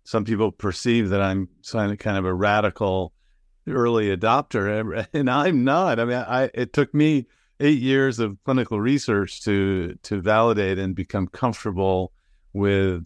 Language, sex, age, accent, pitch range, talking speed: English, male, 50-69, American, 95-115 Hz, 145 wpm